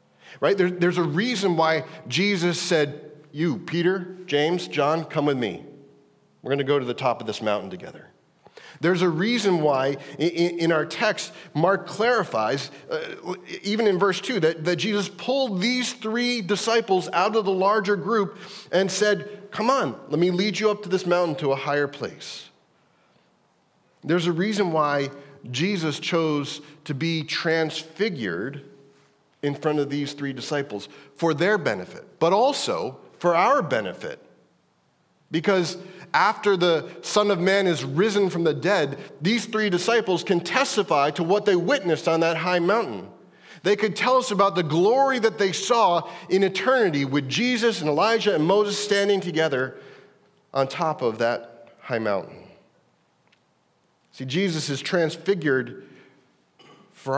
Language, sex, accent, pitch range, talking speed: English, male, American, 150-205 Hz, 155 wpm